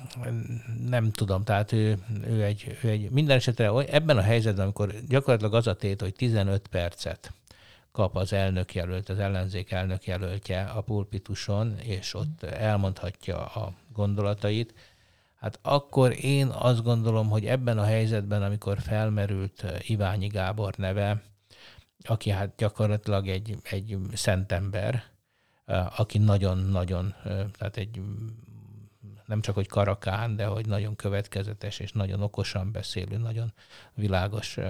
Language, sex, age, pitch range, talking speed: Hungarian, male, 60-79, 95-110 Hz, 125 wpm